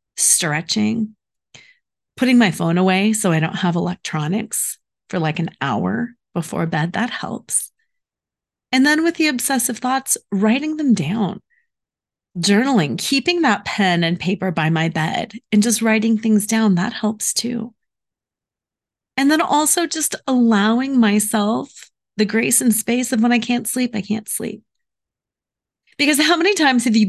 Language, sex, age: English, female, 30-49